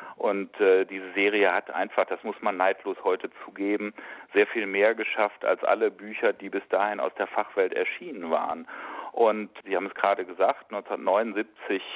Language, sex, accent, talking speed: German, male, German, 170 wpm